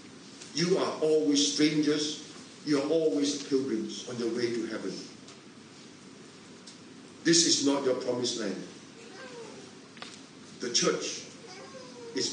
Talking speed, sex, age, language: 105 wpm, male, 50-69, English